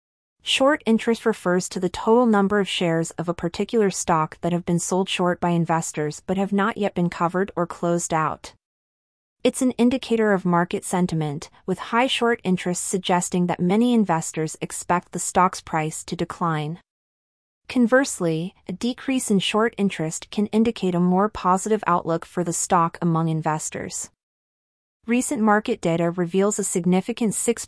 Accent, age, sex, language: American, 30-49, female, English